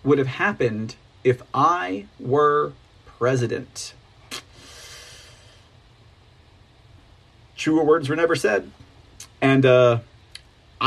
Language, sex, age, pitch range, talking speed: English, male, 40-59, 115-190 Hz, 75 wpm